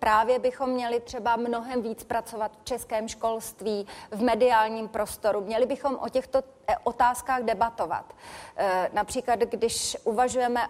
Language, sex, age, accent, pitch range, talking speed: Czech, female, 30-49, native, 225-265 Hz, 125 wpm